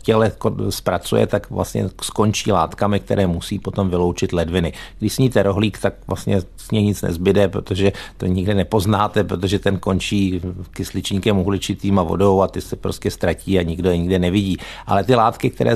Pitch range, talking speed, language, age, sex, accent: 95-110 Hz, 170 wpm, Czech, 50-69, male, native